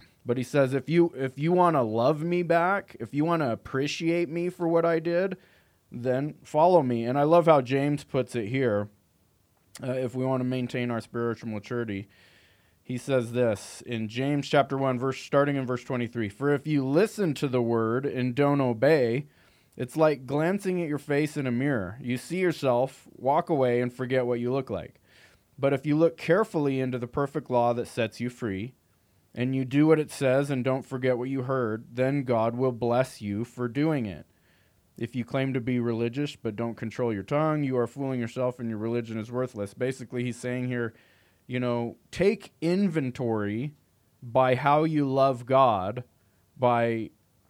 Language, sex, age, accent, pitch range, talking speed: English, male, 20-39, American, 120-145 Hz, 190 wpm